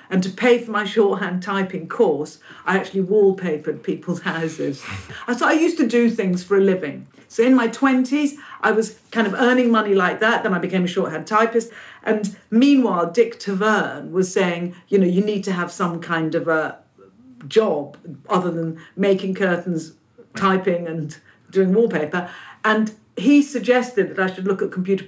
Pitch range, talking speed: 160-205 Hz, 175 wpm